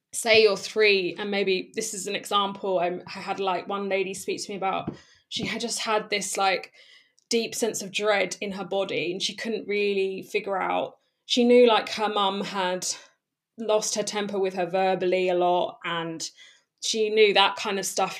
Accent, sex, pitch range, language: British, female, 185-215 Hz, English